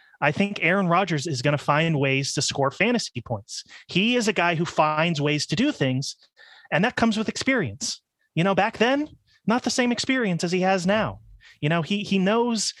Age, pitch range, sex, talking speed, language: 30-49, 145-195 Hz, male, 210 wpm, English